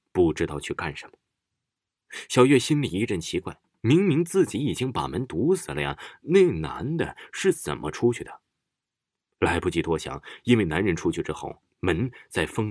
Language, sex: Chinese, male